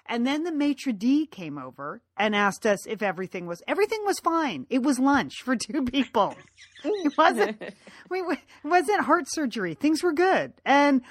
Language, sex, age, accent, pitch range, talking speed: English, female, 40-59, American, 230-310 Hz, 180 wpm